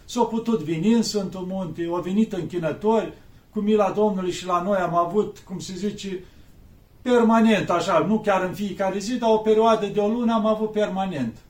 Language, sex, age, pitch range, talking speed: Romanian, male, 40-59, 165-220 Hz, 175 wpm